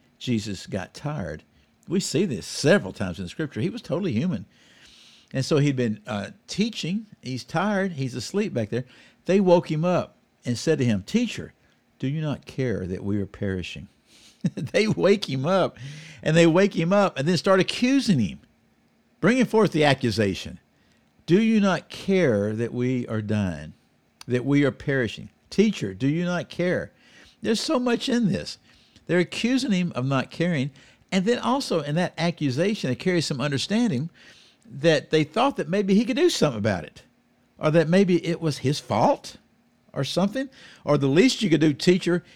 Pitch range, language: 120-185 Hz, English